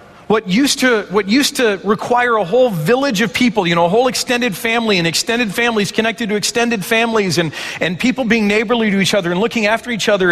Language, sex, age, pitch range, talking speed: English, male, 40-59, 145-215 Hz, 210 wpm